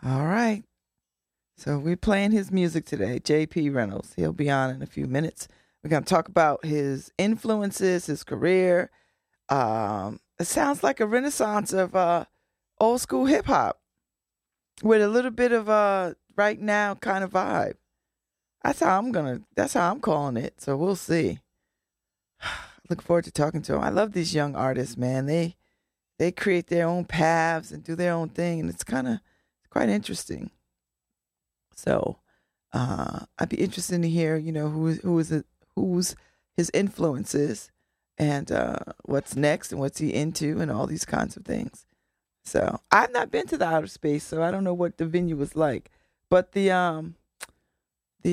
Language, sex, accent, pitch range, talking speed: English, female, American, 150-190 Hz, 175 wpm